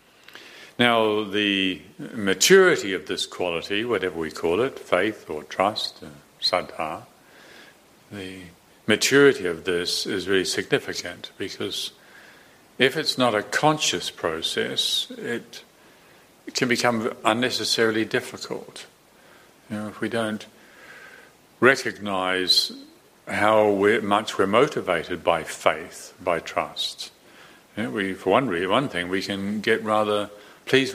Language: English